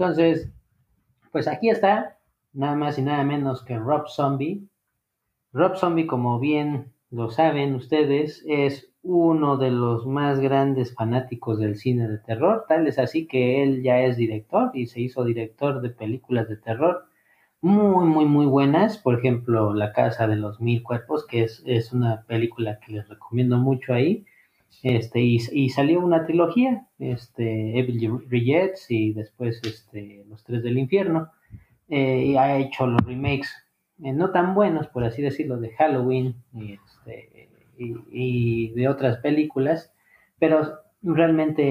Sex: male